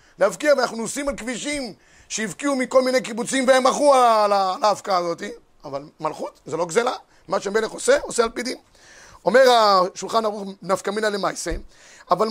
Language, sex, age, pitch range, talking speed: Hebrew, male, 30-49, 200-265 Hz, 170 wpm